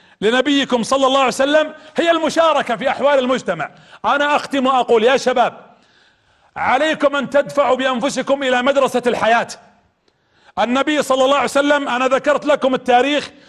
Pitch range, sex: 250-290 Hz, male